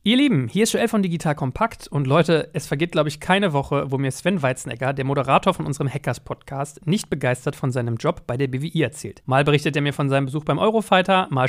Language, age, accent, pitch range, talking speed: German, 40-59, German, 135-180 Hz, 230 wpm